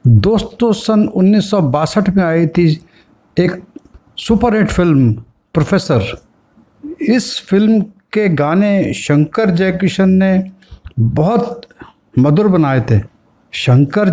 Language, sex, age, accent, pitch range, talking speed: Hindi, male, 60-79, native, 150-195 Hz, 95 wpm